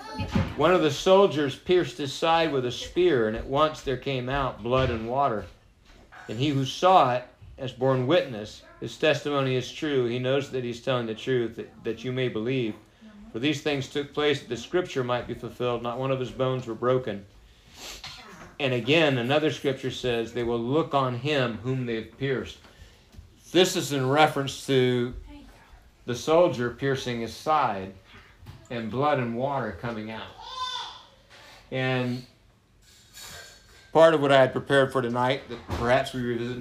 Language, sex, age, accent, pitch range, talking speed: English, male, 50-69, American, 115-140 Hz, 170 wpm